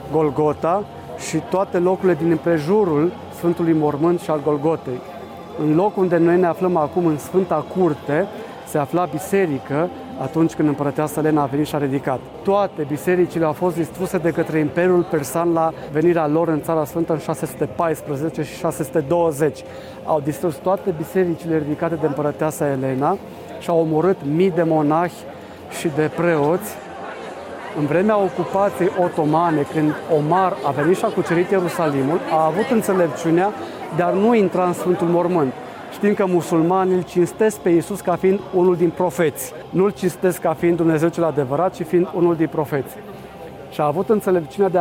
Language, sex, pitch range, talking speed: Romanian, male, 155-180 Hz, 160 wpm